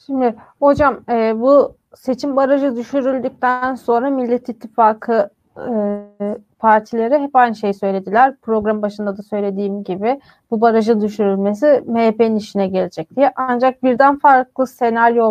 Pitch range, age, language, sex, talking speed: 225-260 Hz, 30-49, Turkish, female, 125 wpm